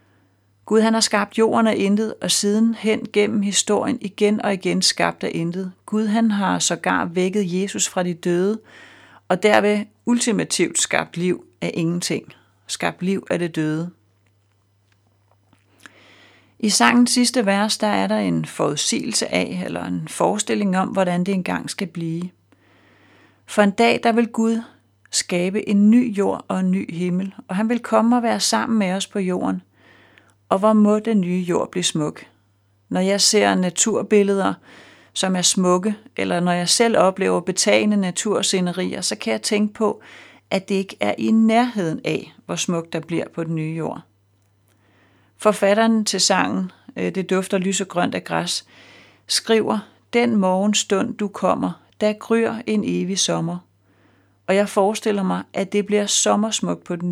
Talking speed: 165 wpm